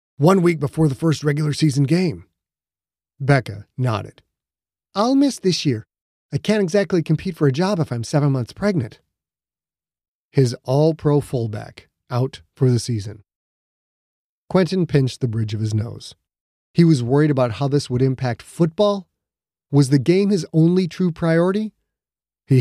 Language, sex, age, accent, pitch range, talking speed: English, male, 30-49, American, 110-160 Hz, 150 wpm